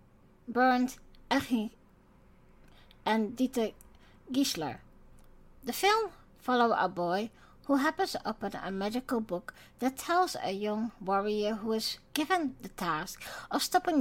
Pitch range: 190-255 Hz